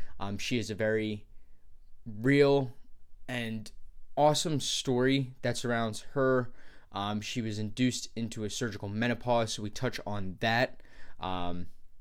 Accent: American